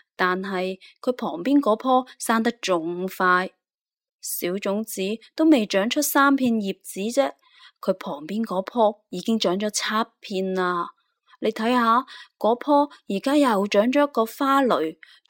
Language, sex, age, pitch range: Chinese, female, 20-39, 190-245 Hz